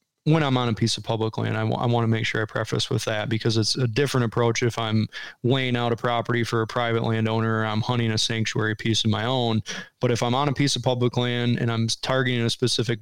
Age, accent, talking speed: 20-39, American, 265 wpm